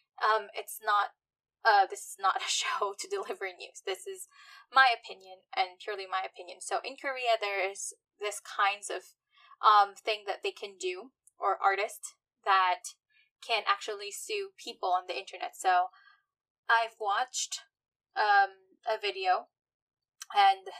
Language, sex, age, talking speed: English, female, 10-29, 145 wpm